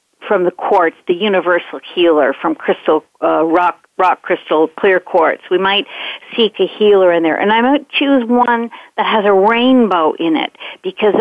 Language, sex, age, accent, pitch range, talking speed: English, female, 50-69, American, 185-245 Hz, 175 wpm